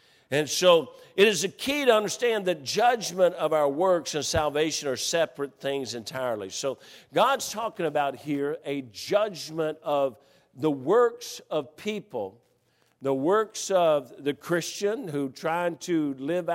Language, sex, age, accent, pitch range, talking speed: English, male, 50-69, American, 150-185 Hz, 145 wpm